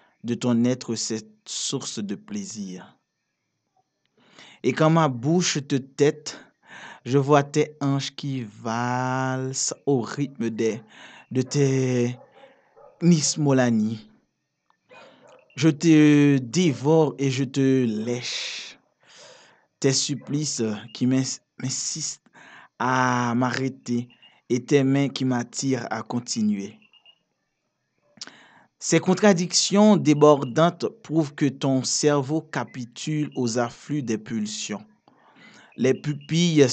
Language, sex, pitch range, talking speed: French, male, 120-150 Hz, 95 wpm